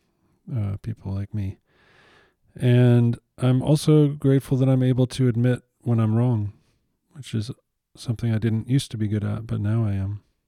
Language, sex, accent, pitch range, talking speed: English, male, American, 105-120 Hz, 170 wpm